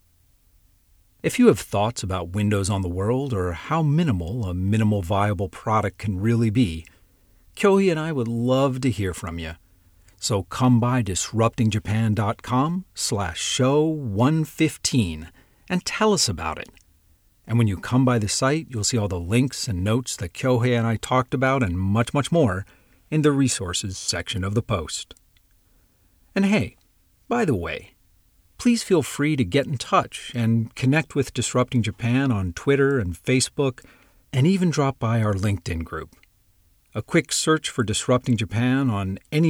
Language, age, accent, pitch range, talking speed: English, 50-69, American, 95-130 Hz, 165 wpm